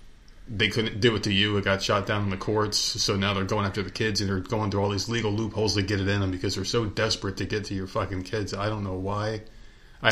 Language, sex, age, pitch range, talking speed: English, male, 30-49, 100-110 Hz, 285 wpm